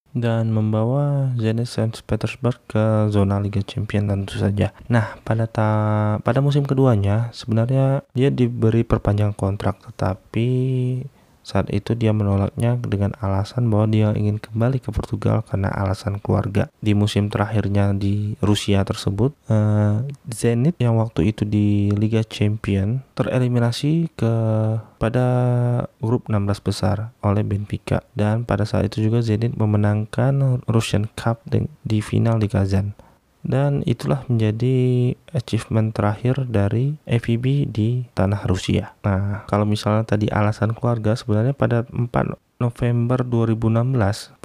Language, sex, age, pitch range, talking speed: Indonesian, male, 20-39, 105-125 Hz, 125 wpm